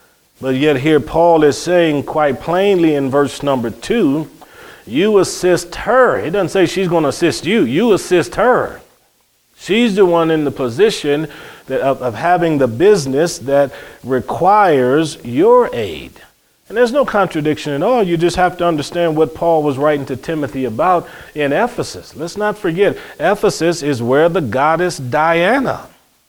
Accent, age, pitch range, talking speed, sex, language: American, 40-59, 140-175 Hz, 160 wpm, male, English